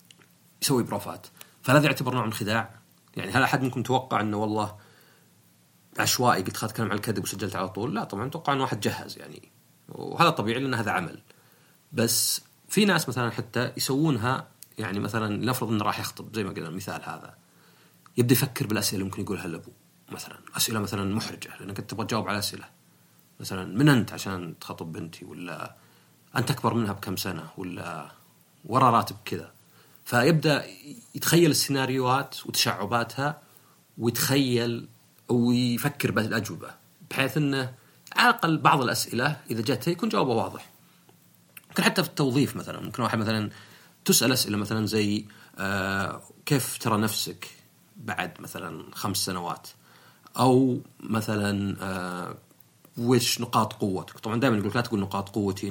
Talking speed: 145 wpm